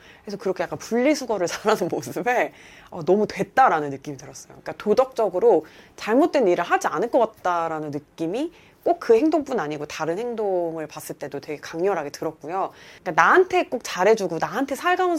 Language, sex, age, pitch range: Korean, female, 30-49, 160-265 Hz